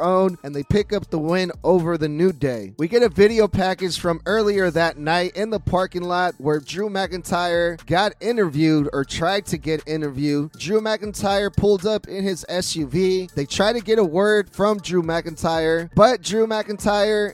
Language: English